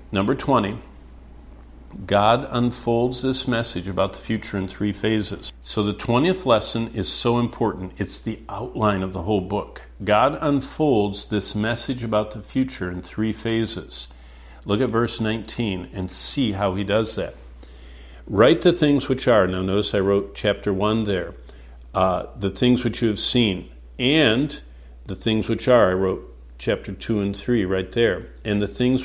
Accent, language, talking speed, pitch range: American, English, 165 wpm, 95-120 Hz